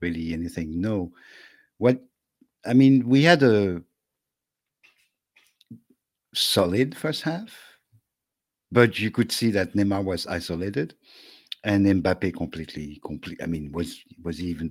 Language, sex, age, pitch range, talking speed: English, male, 60-79, 95-135 Hz, 120 wpm